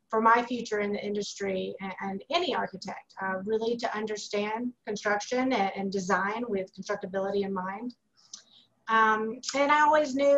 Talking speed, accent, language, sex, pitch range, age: 145 wpm, American, English, female, 205-245 Hz, 30-49